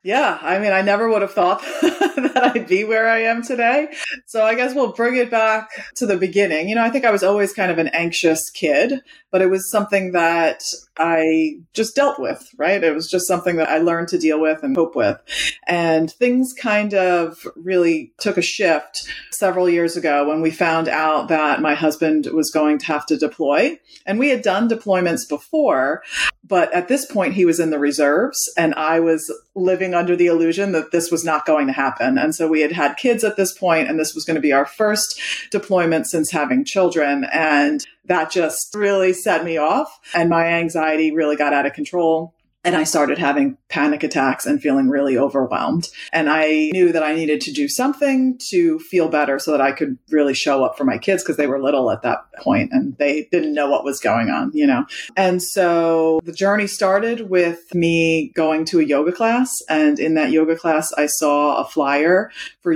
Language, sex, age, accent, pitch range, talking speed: English, female, 30-49, American, 155-225 Hz, 210 wpm